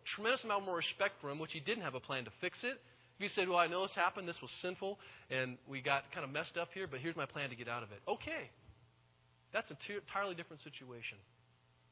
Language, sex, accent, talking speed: English, male, American, 240 wpm